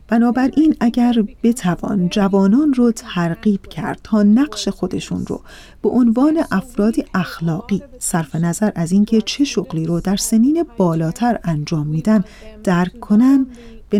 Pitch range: 185-235 Hz